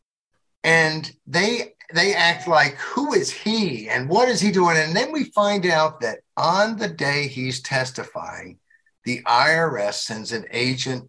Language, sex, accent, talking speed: English, male, American, 155 wpm